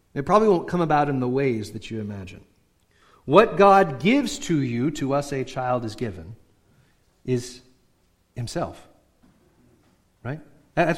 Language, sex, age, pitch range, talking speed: English, male, 40-59, 125-175 Hz, 140 wpm